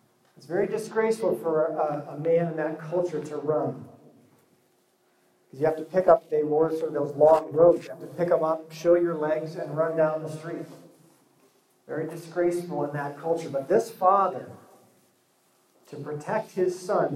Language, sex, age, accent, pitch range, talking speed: English, male, 40-59, American, 150-175 Hz, 180 wpm